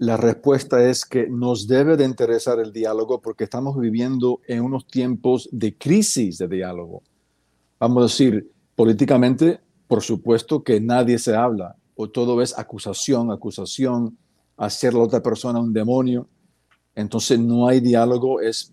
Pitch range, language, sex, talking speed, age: 105-130 Hz, English, male, 145 wpm, 50-69